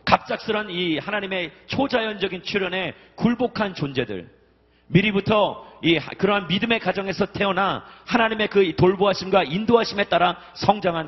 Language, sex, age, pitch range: Korean, male, 40-59, 140-200 Hz